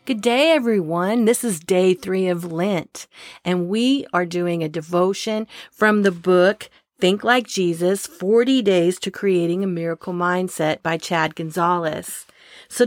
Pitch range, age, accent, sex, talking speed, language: 175-230 Hz, 50-69, American, female, 150 wpm, English